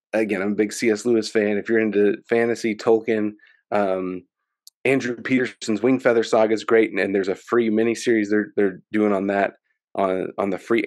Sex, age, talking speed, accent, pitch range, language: male, 30-49, 195 wpm, American, 100-120 Hz, English